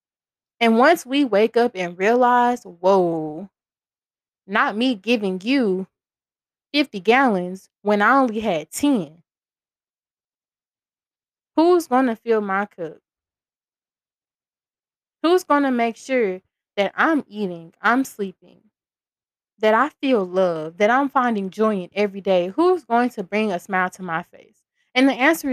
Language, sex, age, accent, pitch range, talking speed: English, female, 20-39, American, 195-265 Hz, 135 wpm